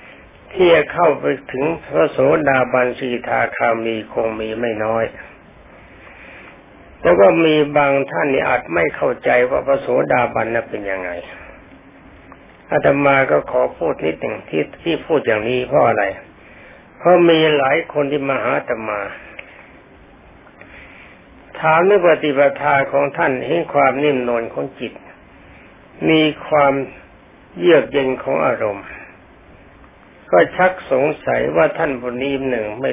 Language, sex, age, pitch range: Thai, male, 60-79, 120-145 Hz